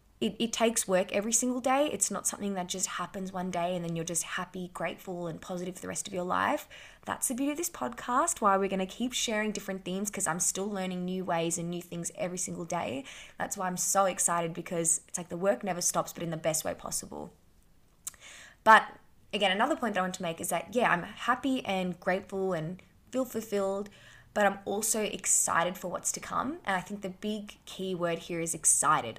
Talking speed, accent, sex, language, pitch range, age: 225 wpm, Australian, female, English, 170-200 Hz, 20-39